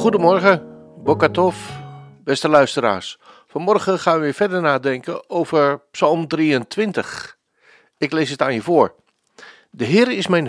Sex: male